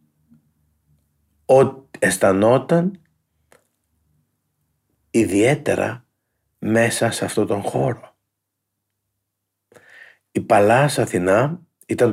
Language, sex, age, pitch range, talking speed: Greek, male, 50-69, 100-120 Hz, 60 wpm